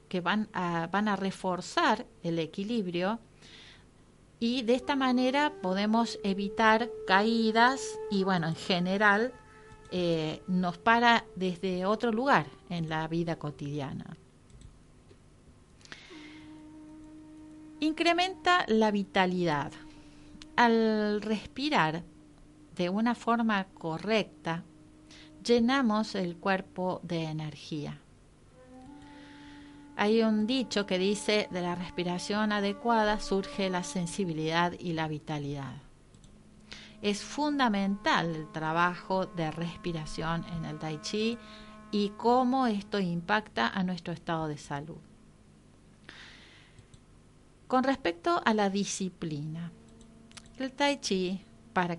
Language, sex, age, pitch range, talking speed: Spanish, female, 40-59, 170-235 Hz, 100 wpm